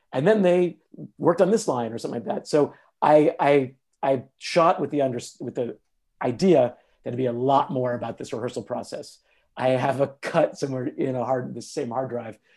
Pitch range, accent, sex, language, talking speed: 120-140 Hz, American, male, English, 210 wpm